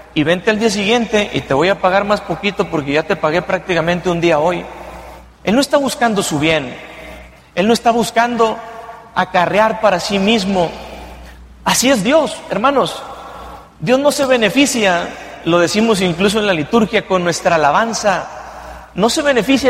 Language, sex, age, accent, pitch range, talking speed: English, male, 40-59, Mexican, 165-225 Hz, 165 wpm